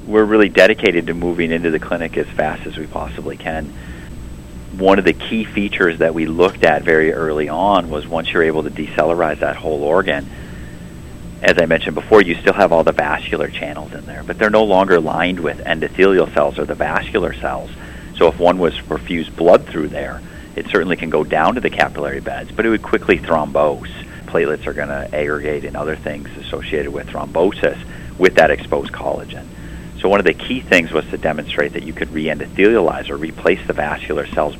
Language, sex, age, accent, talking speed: English, male, 40-59, American, 200 wpm